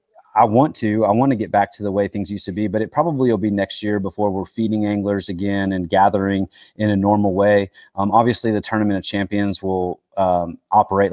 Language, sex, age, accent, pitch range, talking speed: English, male, 30-49, American, 95-110 Hz, 225 wpm